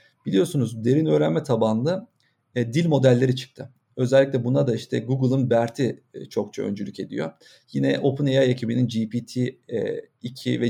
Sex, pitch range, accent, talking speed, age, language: male, 120-145 Hz, native, 135 wpm, 40-59, Turkish